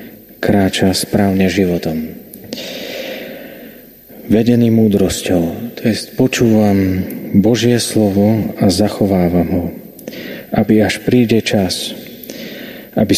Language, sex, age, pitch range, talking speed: Slovak, male, 40-59, 95-110 Hz, 80 wpm